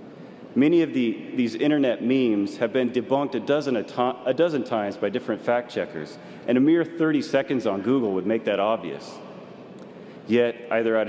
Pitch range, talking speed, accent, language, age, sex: 115-145 Hz, 185 wpm, American, English, 40-59, male